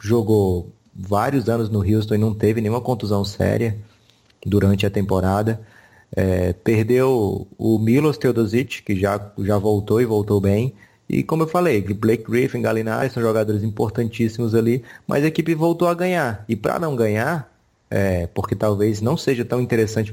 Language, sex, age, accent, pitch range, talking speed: Portuguese, male, 20-39, Brazilian, 105-120 Hz, 160 wpm